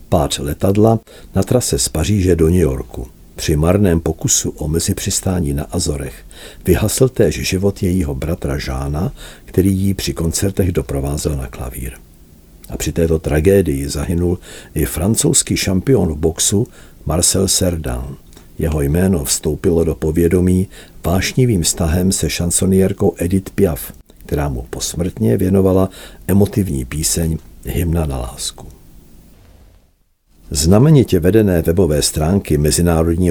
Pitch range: 80-95 Hz